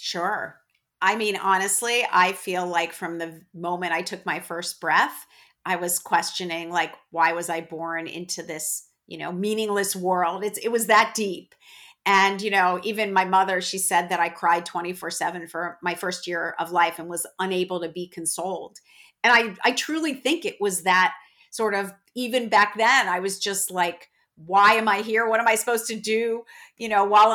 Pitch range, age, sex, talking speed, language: 180-215 Hz, 50-69, female, 195 wpm, English